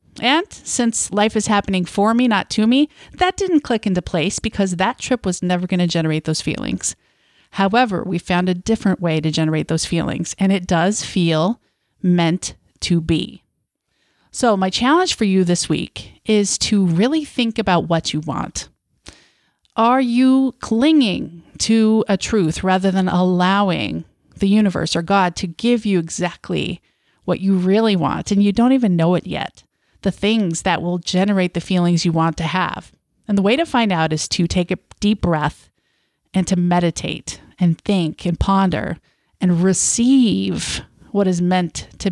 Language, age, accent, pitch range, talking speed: English, 30-49, American, 170-220 Hz, 170 wpm